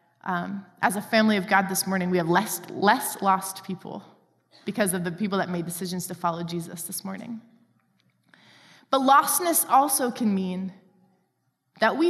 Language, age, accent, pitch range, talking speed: English, 20-39, American, 185-235 Hz, 165 wpm